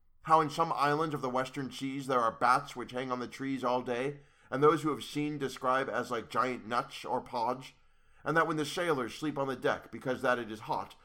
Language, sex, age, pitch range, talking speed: English, male, 30-49, 120-155 Hz, 240 wpm